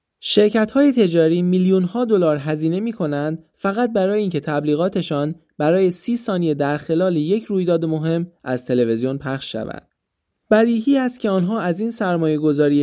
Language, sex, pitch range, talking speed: Persian, male, 145-200 Hz, 145 wpm